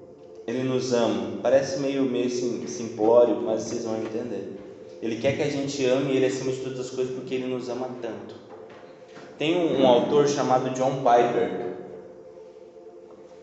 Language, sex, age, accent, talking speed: Portuguese, male, 20-39, Brazilian, 155 wpm